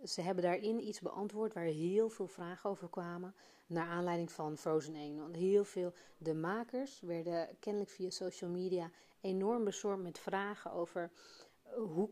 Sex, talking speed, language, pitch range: female, 155 wpm, Dutch, 165-195 Hz